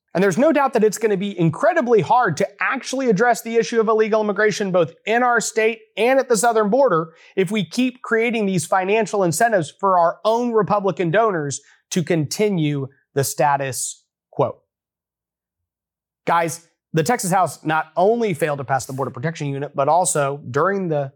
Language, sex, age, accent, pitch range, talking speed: English, male, 30-49, American, 155-210 Hz, 175 wpm